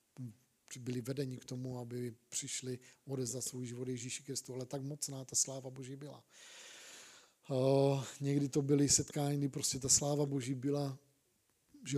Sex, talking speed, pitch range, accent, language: male, 155 wpm, 130-150 Hz, native, Czech